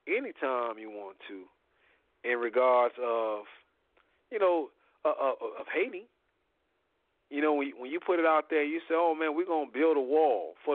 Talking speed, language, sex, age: 180 wpm, English, male, 40-59